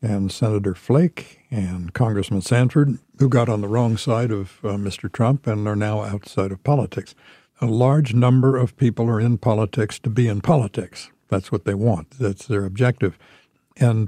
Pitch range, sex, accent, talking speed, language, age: 105-135 Hz, male, American, 180 wpm, English, 60-79